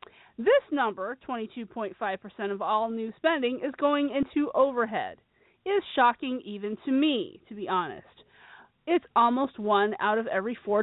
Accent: American